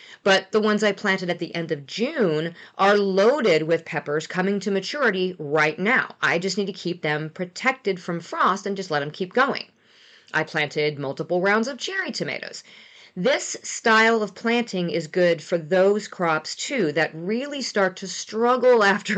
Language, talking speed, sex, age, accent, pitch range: English, 180 wpm, female, 40-59, American, 160-215 Hz